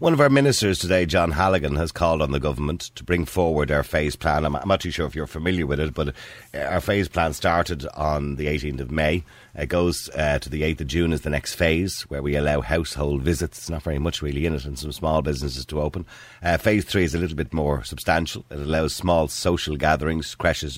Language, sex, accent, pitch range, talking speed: English, male, Irish, 75-90 Hz, 235 wpm